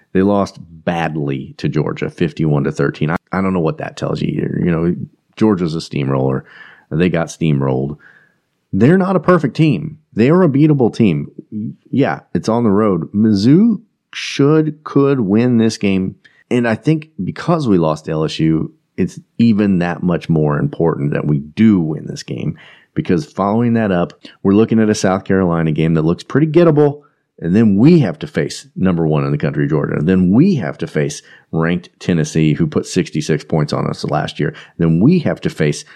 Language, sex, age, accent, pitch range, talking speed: English, male, 30-49, American, 80-110 Hz, 190 wpm